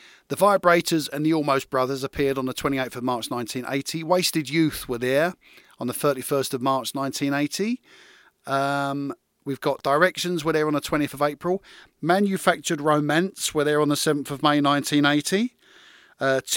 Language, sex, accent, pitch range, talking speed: English, male, British, 135-165 Hz, 160 wpm